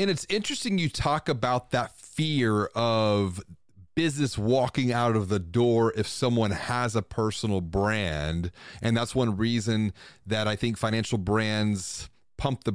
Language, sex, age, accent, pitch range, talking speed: English, male, 30-49, American, 105-145 Hz, 150 wpm